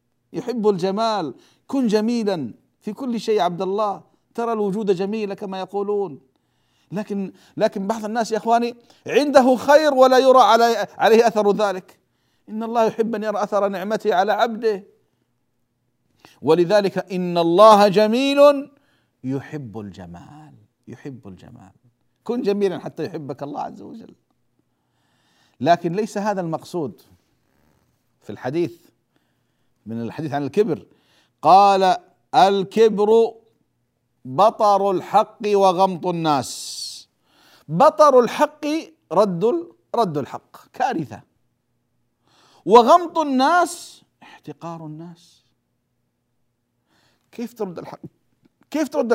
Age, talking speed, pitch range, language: 50-69, 100 wpm, 160-235 Hz, Arabic